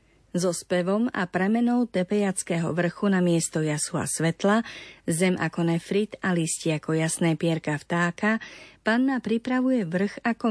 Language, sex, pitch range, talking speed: Slovak, female, 170-210 Hz, 135 wpm